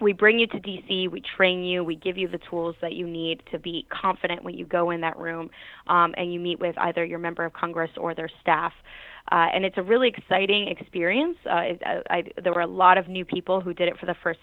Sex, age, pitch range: female, 20-39, 170-185 Hz